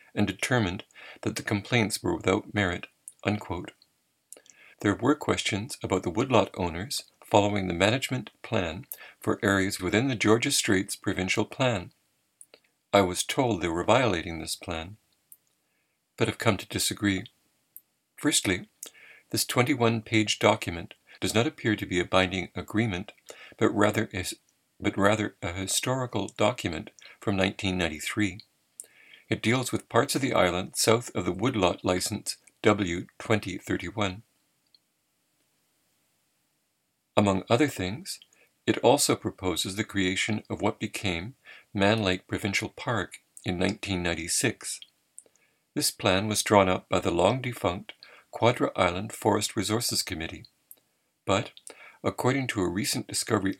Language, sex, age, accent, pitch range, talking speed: English, male, 60-79, American, 95-110 Hz, 120 wpm